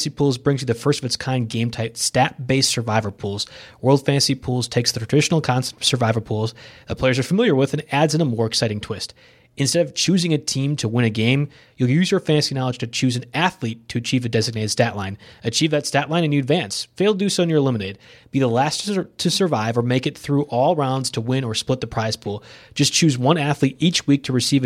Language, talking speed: English, 245 wpm